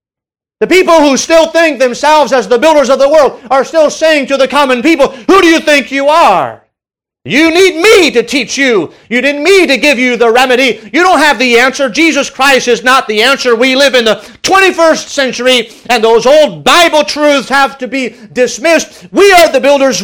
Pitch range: 225-290 Hz